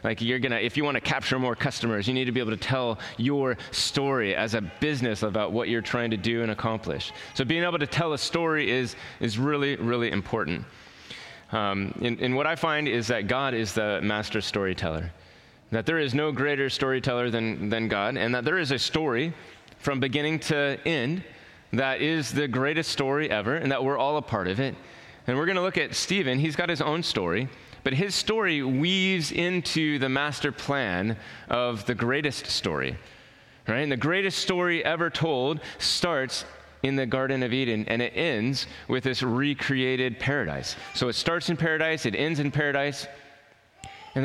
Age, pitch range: 30-49, 115-150 Hz